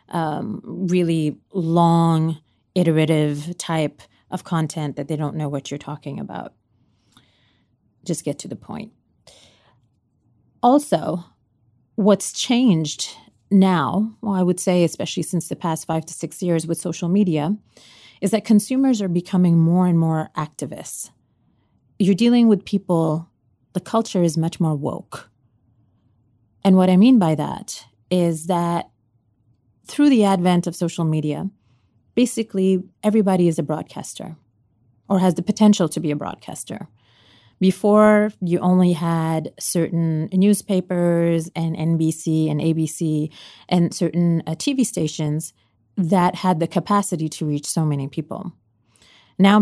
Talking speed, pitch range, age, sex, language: 130 wpm, 150-190 Hz, 30-49, female, English